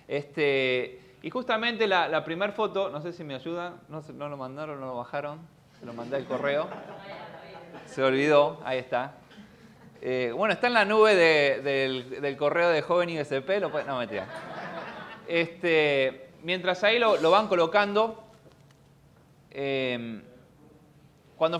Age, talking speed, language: 20-39, 150 wpm, Spanish